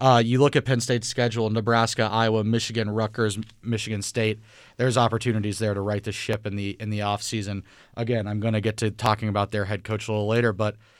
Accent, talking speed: American, 220 wpm